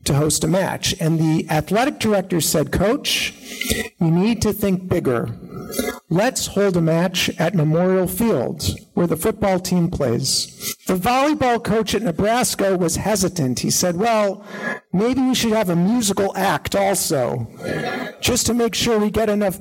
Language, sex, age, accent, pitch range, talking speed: English, male, 50-69, American, 175-215 Hz, 160 wpm